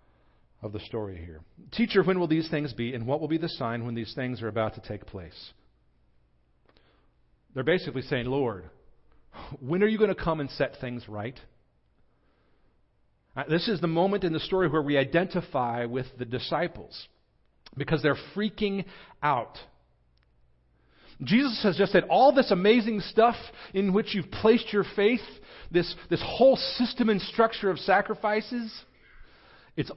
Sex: male